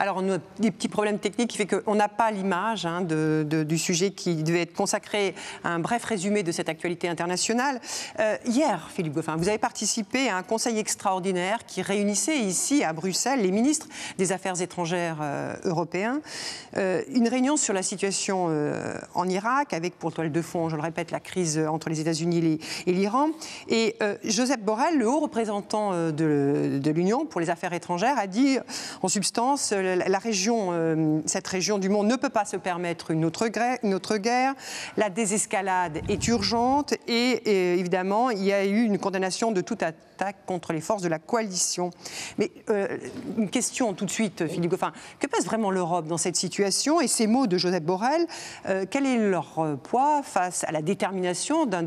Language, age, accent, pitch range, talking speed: French, 50-69, French, 175-225 Hz, 185 wpm